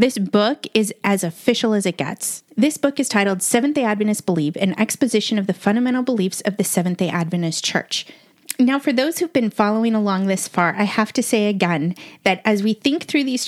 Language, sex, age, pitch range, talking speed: English, female, 30-49, 190-250 Hz, 205 wpm